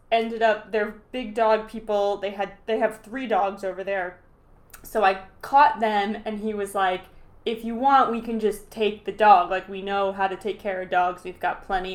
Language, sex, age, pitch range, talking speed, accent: English, female, 20-39, 200-240 Hz, 215 wpm, American